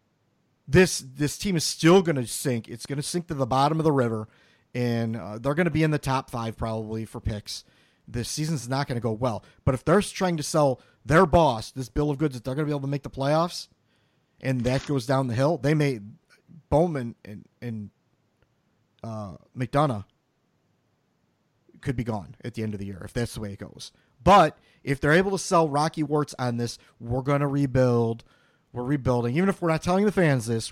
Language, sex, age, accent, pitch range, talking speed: English, male, 30-49, American, 120-150 Hz, 220 wpm